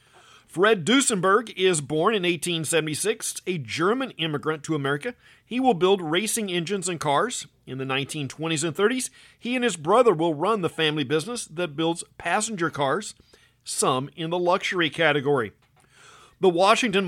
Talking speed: 150 wpm